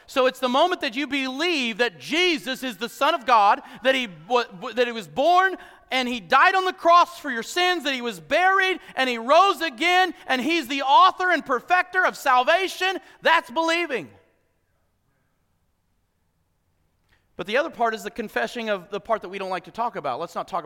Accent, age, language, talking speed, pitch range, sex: American, 40-59, English, 190 wpm, 230-335 Hz, male